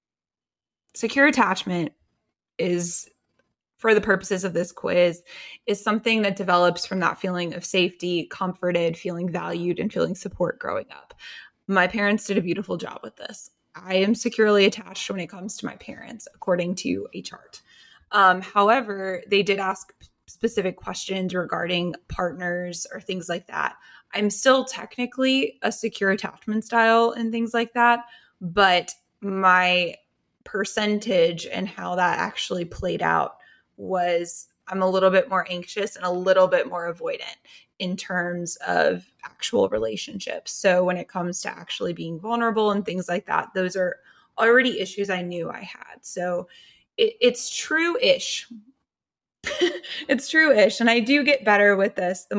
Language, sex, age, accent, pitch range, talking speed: English, female, 20-39, American, 180-230 Hz, 150 wpm